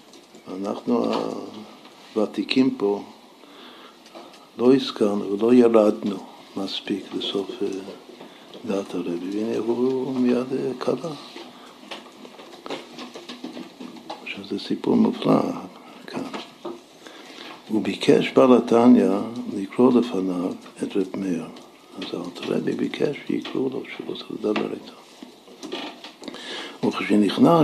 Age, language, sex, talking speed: 60-79, Hebrew, male, 80 wpm